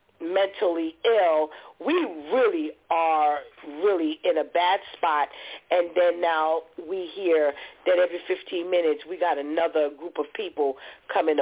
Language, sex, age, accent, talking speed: English, female, 40-59, American, 135 wpm